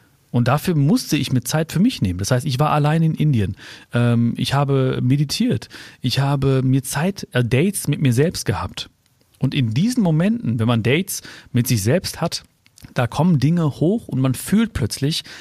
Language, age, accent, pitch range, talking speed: German, 40-59, German, 125-160 Hz, 185 wpm